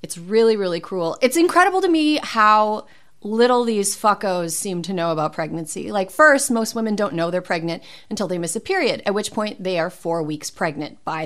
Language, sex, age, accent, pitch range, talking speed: English, female, 30-49, American, 180-240 Hz, 210 wpm